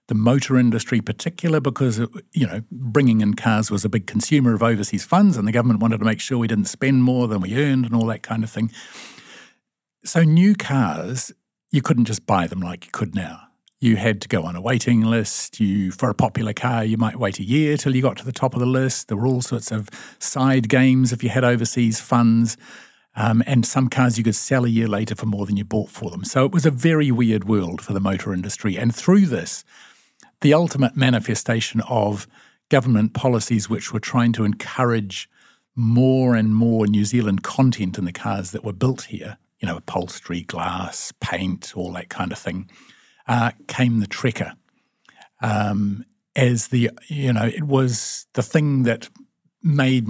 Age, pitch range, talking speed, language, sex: 50-69, 110-130 Hz, 200 wpm, English, male